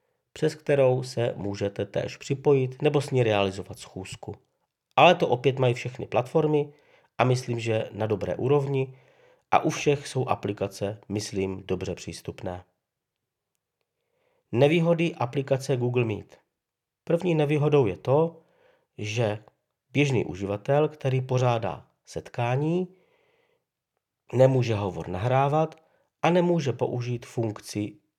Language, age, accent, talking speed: Czech, 50-69, native, 110 wpm